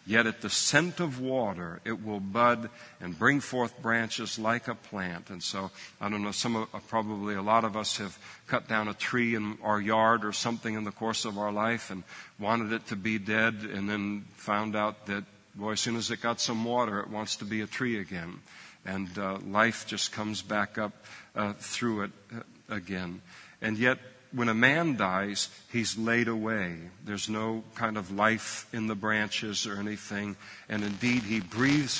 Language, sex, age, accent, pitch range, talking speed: English, male, 50-69, American, 100-115 Hz, 195 wpm